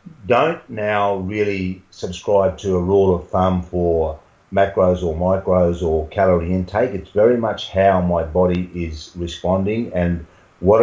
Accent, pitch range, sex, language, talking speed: Australian, 85-95 Hz, male, English, 145 wpm